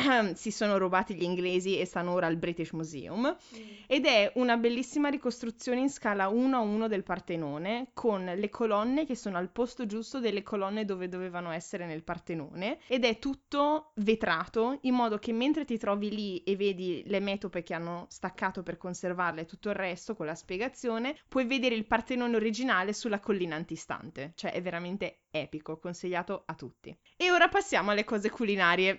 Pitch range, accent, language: 185-245 Hz, native, Italian